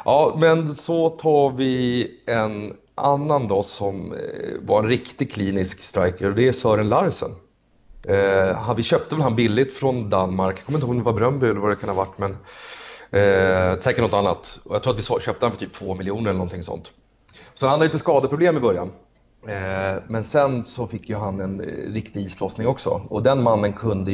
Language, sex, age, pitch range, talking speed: Swedish, male, 30-49, 95-120 Hz, 205 wpm